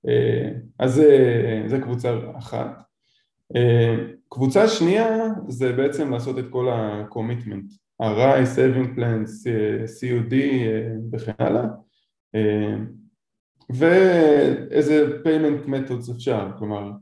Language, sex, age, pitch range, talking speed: Hebrew, male, 20-39, 115-140 Hz, 85 wpm